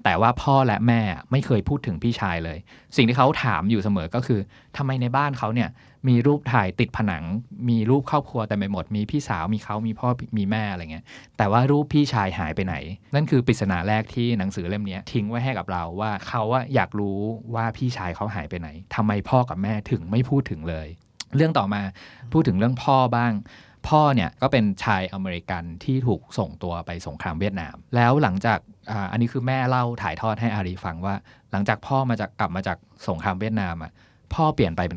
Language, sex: Thai, male